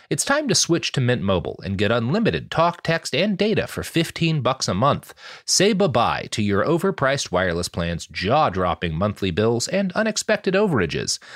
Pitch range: 110-170 Hz